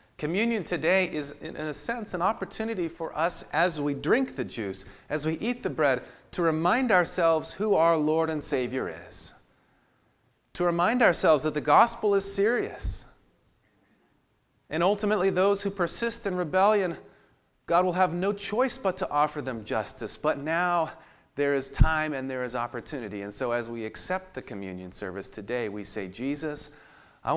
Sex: male